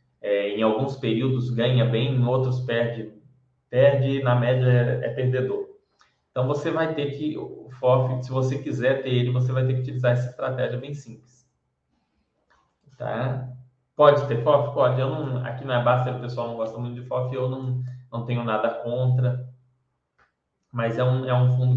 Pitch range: 125-145 Hz